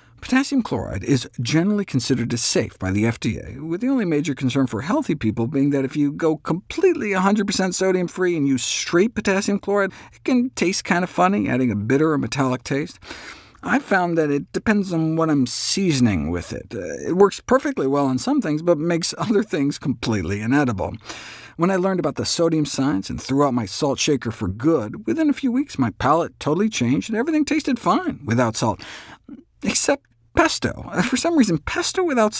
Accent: American